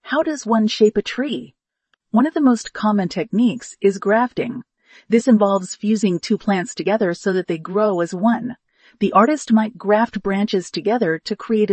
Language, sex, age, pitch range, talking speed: English, female, 40-59, 195-235 Hz, 175 wpm